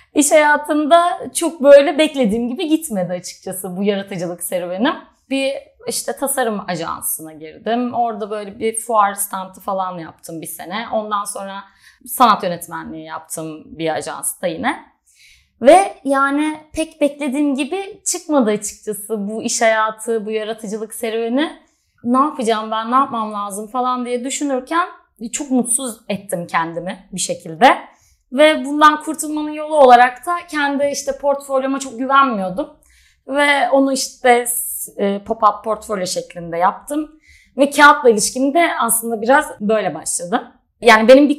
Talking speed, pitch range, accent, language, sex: 130 wpm, 215-290 Hz, native, Turkish, female